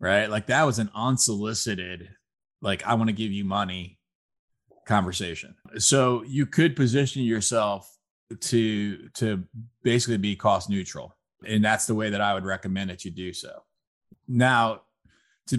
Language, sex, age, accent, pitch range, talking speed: English, male, 20-39, American, 100-125 Hz, 150 wpm